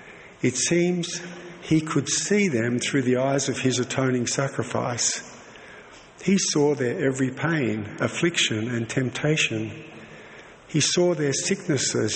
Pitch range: 120-150 Hz